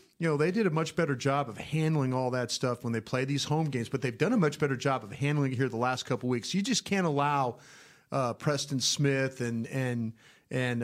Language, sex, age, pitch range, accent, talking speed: English, male, 40-59, 125-150 Hz, American, 250 wpm